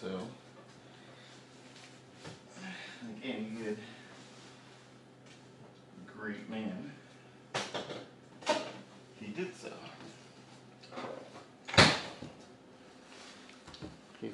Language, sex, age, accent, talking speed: English, male, 50-69, American, 40 wpm